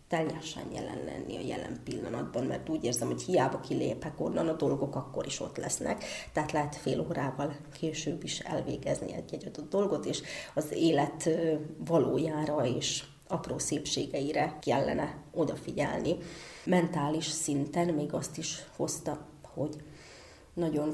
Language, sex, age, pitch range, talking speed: Hungarian, female, 30-49, 150-170 Hz, 130 wpm